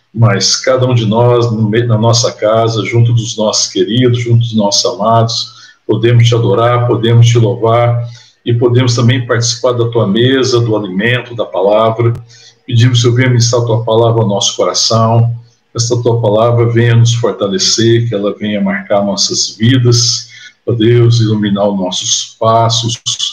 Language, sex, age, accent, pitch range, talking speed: Portuguese, male, 60-79, Brazilian, 110-120 Hz, 165 wpm